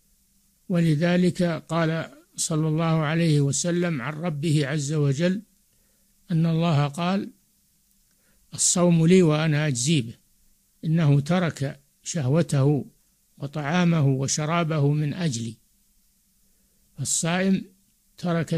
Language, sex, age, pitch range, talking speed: Arabic, male, 60-79, 150-175 Hz, 85 wpm